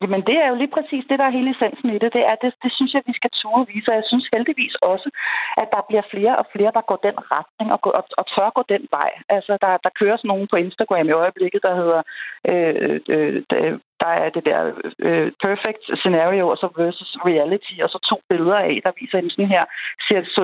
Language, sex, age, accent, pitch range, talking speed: Danish, female, 40-59, native, 185-235 Hz, 240 wpm